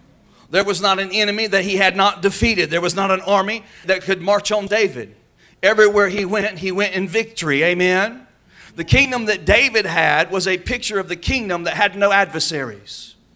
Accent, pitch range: American, 190-220 Hz